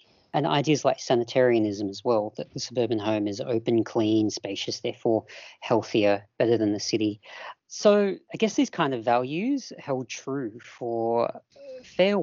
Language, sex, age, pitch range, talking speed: English, female, 40-59, 115-165 Hz, 155 wpm